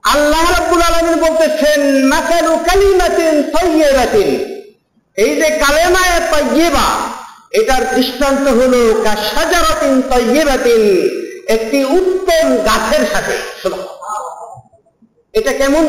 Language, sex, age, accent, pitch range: Bengali, male, 50-69, native, 245-315 Hz